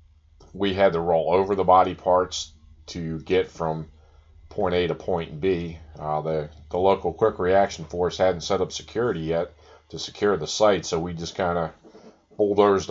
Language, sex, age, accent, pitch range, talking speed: English, male, 40-59, American, 80-95 Hz, 175 wpm